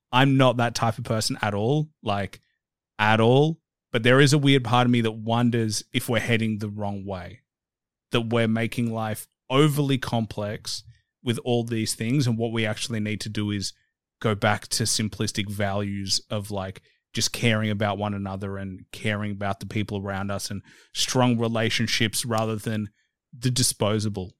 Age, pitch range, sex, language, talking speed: 30-49, 105-125 Hz, male, English, 175 wpm